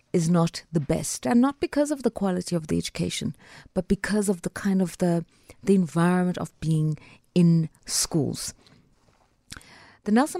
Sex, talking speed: female, 160 wpm